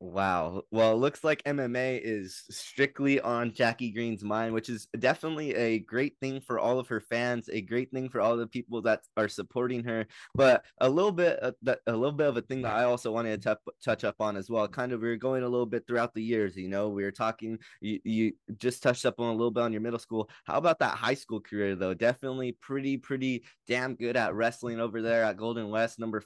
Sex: male